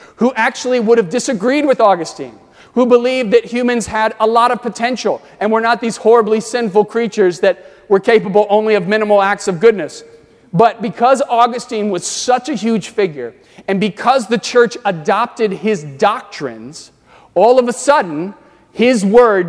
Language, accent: English, American